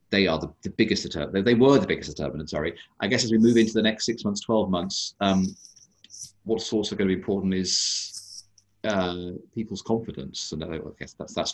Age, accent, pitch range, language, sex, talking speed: 40-59, British, 90-110 Hz, English, male, 205 wpm